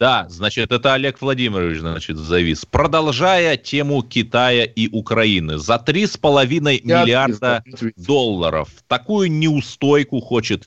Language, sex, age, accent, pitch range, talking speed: Russian, male, 30-49, native, 95-140 Hz, 105 wpm